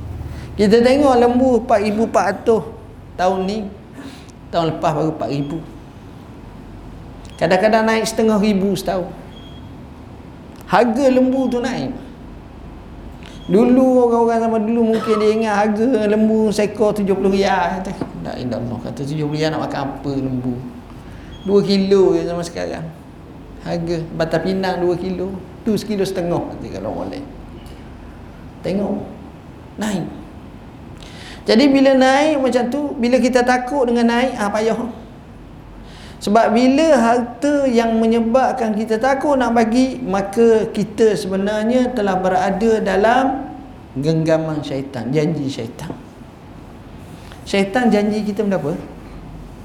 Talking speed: 115 wpm